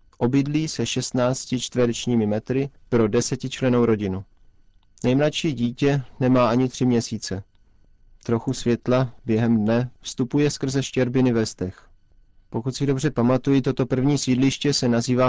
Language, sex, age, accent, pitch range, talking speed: Czech, male, 30-49, native, 115-130 Hz, 120 wpm